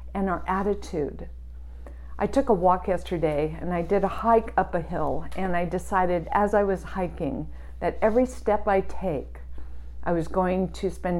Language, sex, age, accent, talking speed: English, female, 50-69, American, 175 wpm